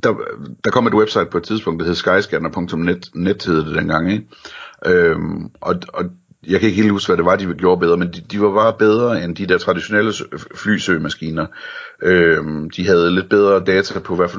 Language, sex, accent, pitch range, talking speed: Danish, male, native, 80-95 Hz, 205 wpm